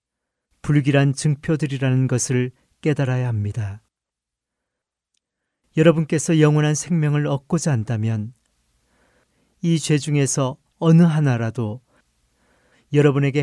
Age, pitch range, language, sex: 40-59, 115-150 Hz, Korean, male